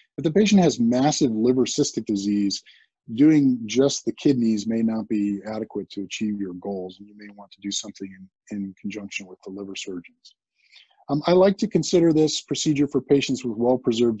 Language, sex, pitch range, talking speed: English, male, 105-135 Hz, 190 wpm